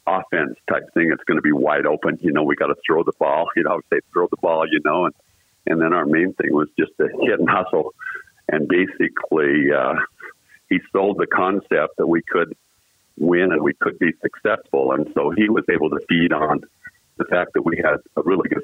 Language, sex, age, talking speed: English, male, 50-69, 225 wpm